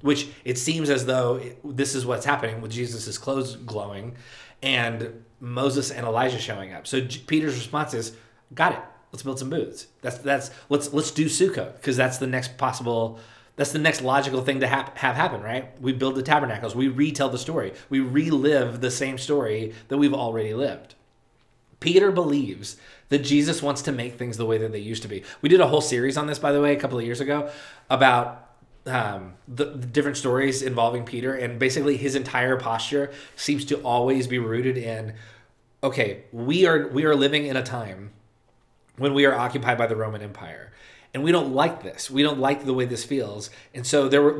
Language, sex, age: English, male, 20-39